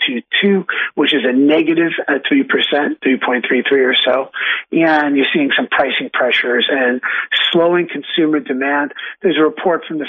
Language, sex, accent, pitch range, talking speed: English, male, American, 145-185 Hz, 155 wpm